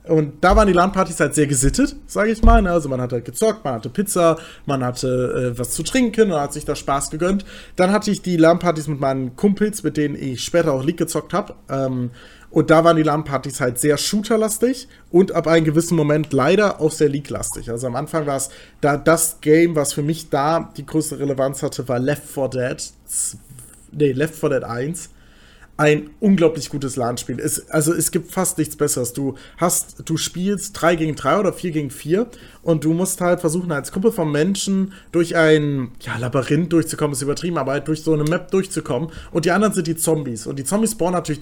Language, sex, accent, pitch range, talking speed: German, male, German, 145-180 Hz, 210 wpm